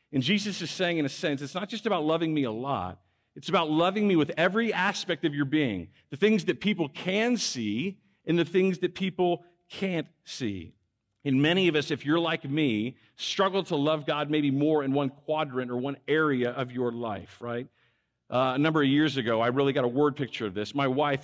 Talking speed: 220 wpm